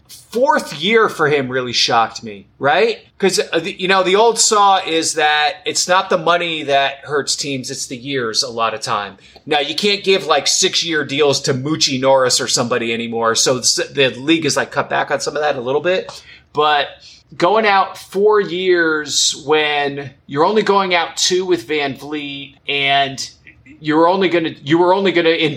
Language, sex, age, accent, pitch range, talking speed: English, male, 30-49, American, 130-170 Hz, 190 wpm